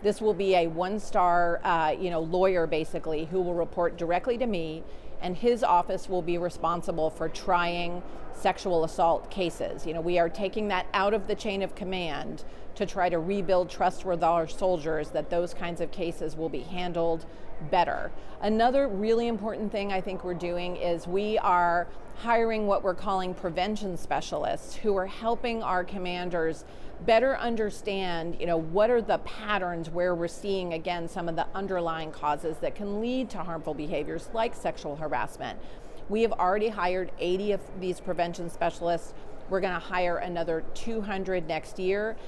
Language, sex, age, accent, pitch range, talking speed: English, female, 40-59, American, 170-205 Hz, 170 wpm